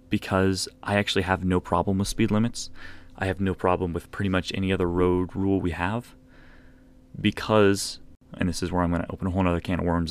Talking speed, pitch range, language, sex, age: 215 wpm, 90-105 Hz, English, male, 20-39